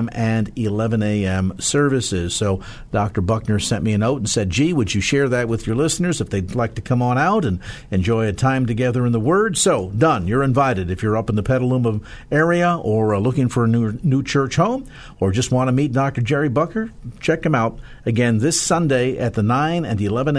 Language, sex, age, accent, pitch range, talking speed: English, male, 50-69, American, 115-155 Hz, 220 wpm